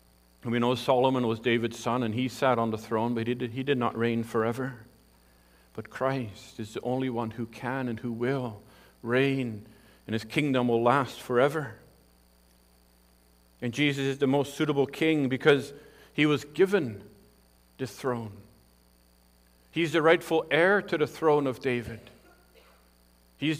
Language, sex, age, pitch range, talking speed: English, male, 50-69, 100-135 Hz, 150 wpm